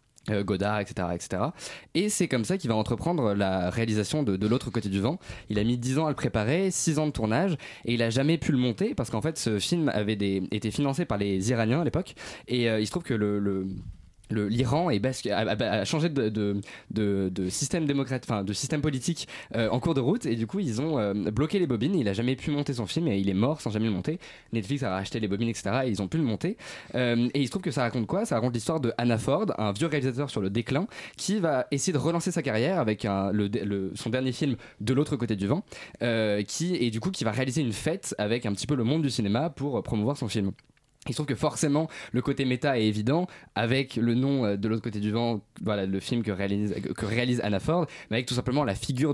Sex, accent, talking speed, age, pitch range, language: male, French, 260 wpm, 20-39, 110-145 Hz, French